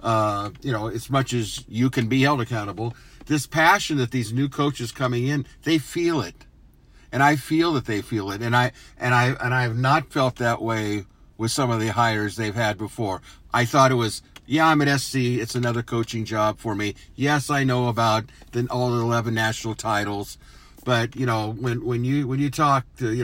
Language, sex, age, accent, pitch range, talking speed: English, male, 50-69, American, 110-135 Hz, 215 wpm